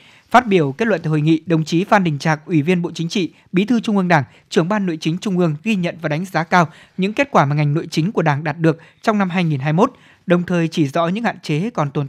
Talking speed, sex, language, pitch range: 285 wpm, male, Vietnamese, 160-200 Hz